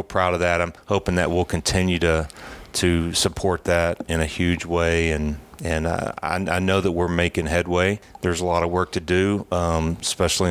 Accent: American